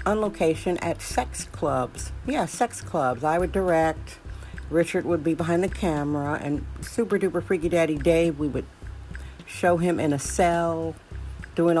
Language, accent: English, American